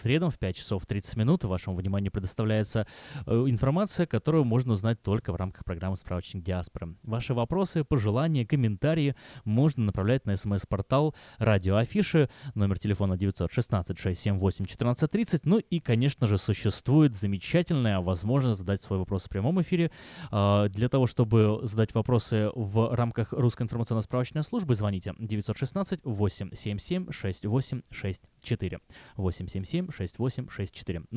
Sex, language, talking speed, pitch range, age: male, Russian, 115 wpm, 105-140 Hz, 20-39